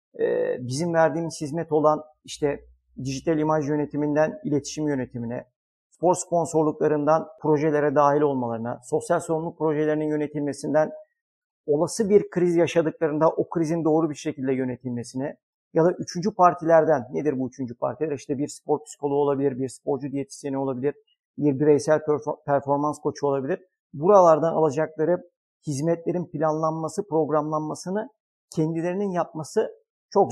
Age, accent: 50-69, native